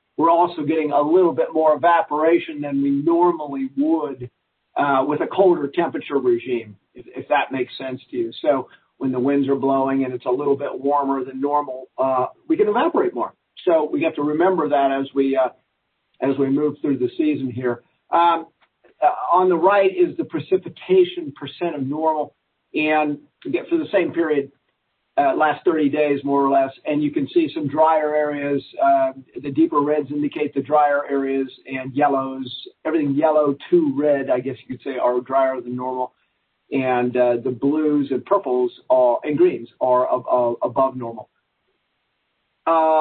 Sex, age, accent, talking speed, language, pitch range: male, 50-69, American, 175 wpm, English, 135-185 Hz